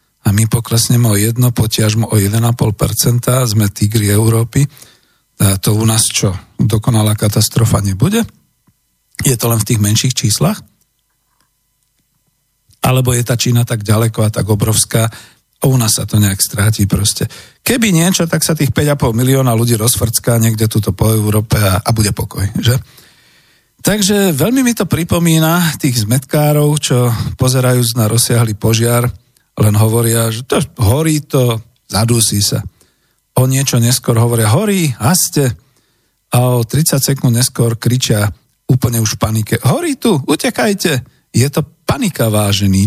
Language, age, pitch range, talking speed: Slovak, 40-59, 110-140 Hz, 145 wpm